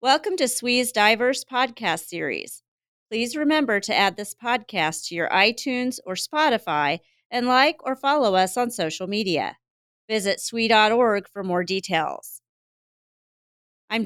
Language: English